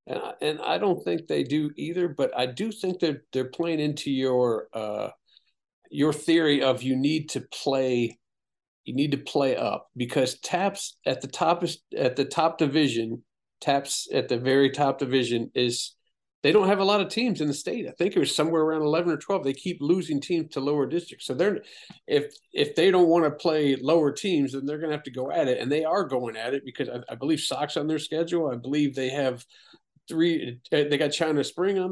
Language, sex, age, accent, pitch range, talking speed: English, male, 50-69, American, 130-170 Hz, 225 wpm